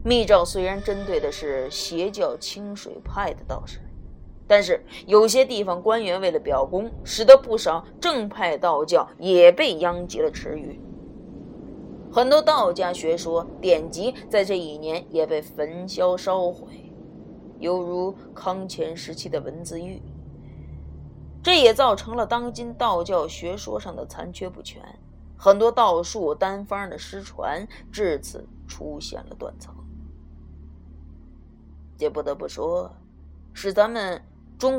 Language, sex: Chinese, female